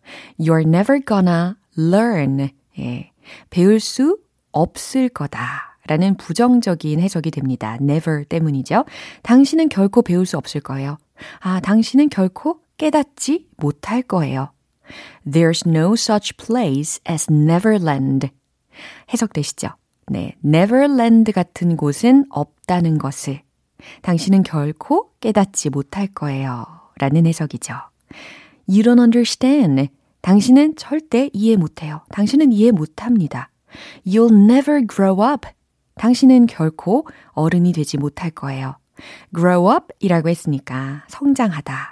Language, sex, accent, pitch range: Korean, female, native, 145-230 Hz